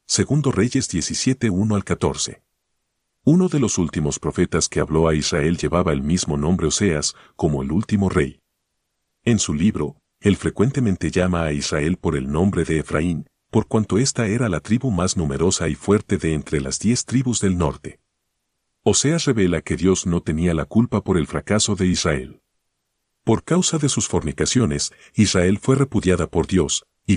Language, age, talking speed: Spanish, 50-69, 170 wpm